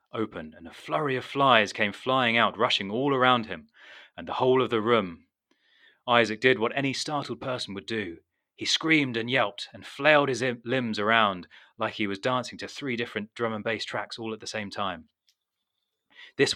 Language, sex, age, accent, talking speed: English, male, 30-49, British, 190 wpm